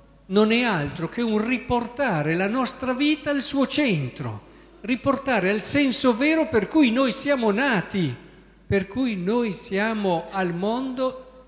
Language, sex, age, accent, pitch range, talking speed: Italian, male, 50-69, native, 160-235 Hz, 140 wpm